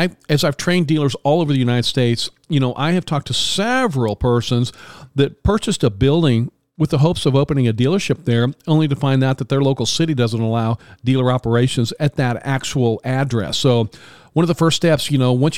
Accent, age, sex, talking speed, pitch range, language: American, 40-59, male, 210 wpm, 120-150 Hz, English